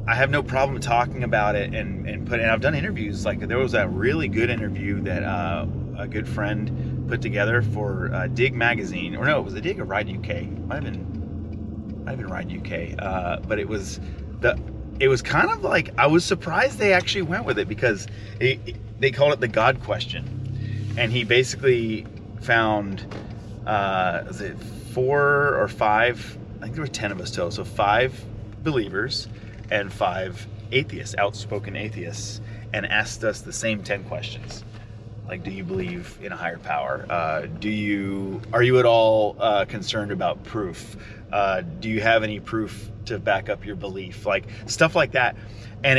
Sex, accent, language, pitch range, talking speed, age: male, American, English, 105-115 Hz, 190 wpm, 30-49